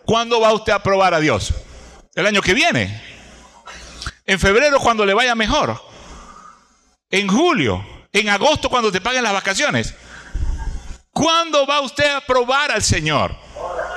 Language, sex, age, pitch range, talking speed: Spanish, male, 60-79, 140-235 Hz, 140 wpm